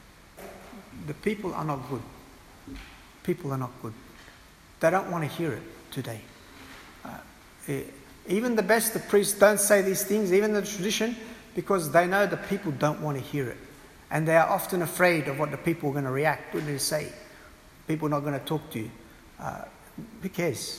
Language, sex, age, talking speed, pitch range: English, male, 60-79, 190 wpm, 145-195 Hz